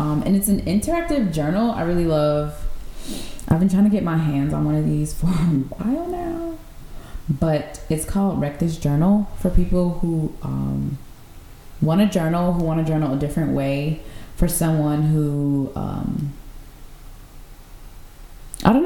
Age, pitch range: 20-39, 130-175 Hz